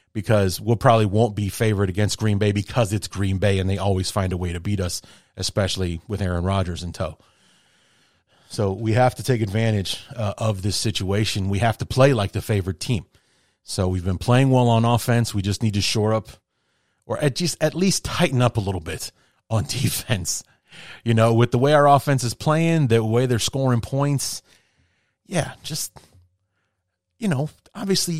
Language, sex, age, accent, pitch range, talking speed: English, male, 30-49, American, 100-145 Hz, 190 wpm